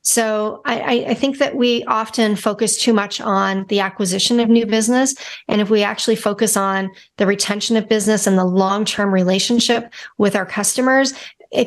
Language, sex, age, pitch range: English, female, 40-59, 205-255 Hz